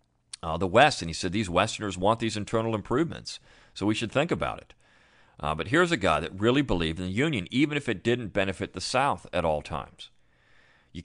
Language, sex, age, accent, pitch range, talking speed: English, male, 40-59, American, 85-115 Hz, 215 wpm